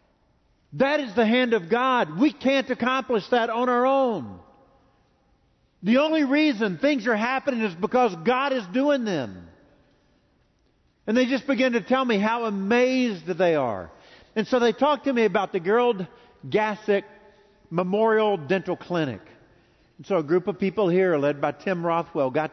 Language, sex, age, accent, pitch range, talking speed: English, male, 50-69, American, 140-210 Hz, 160 wpm